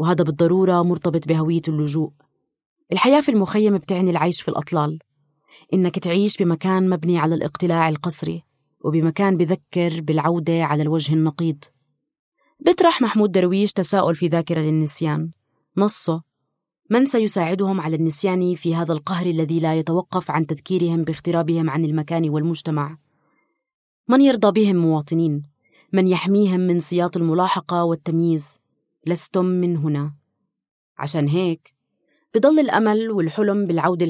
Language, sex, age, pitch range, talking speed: Arabic, female, 20-39, 155-185 Hz, 120 wpm